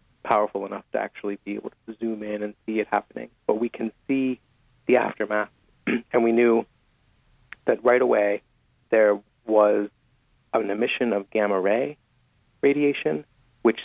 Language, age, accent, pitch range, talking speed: English, 40-59, American, 100-120 Hz, 145 wpm